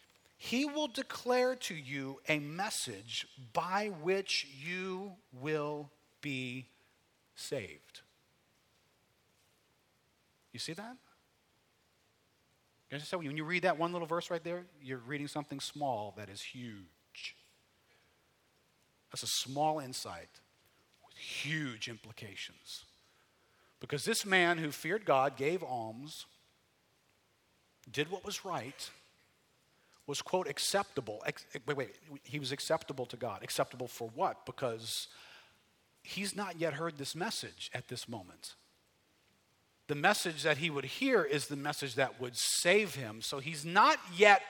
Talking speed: 125 wpm